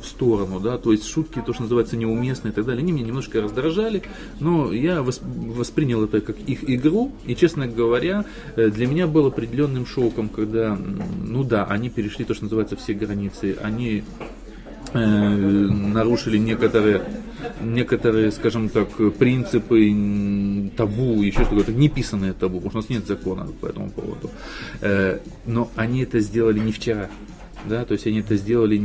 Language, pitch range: Russian, 100-120 Hz